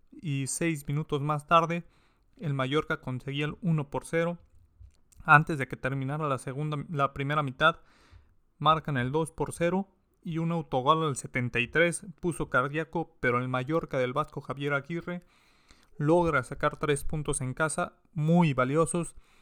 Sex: male